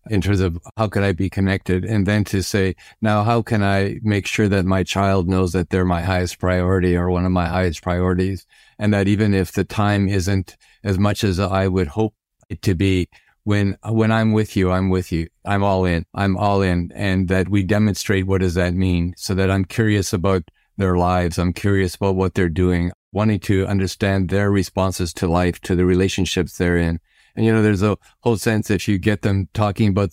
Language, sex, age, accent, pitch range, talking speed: English, male, 50-69, American, 90-105 Hz, 220 wpm